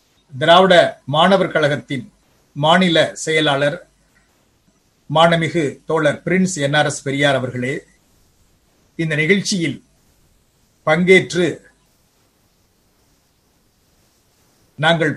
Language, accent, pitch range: Tamil, native, 145-185 Hz